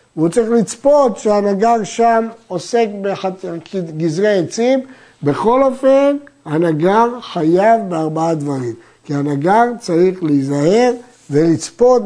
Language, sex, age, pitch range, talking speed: Hebrew, male, 50-69, 170-235 Hz, 95 wpm